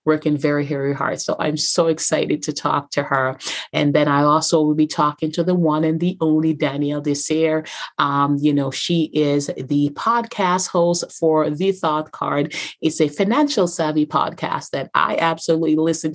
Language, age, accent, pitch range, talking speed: English, 30-49, American, 145-165 Hz, 180 wpm